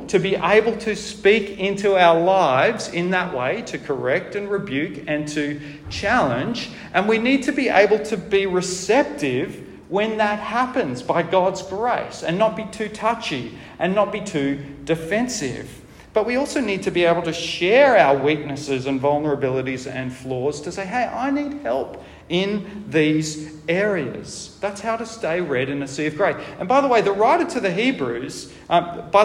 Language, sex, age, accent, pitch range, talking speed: English, male, 40-59, Australian, 155-220 Hz, 180 wpm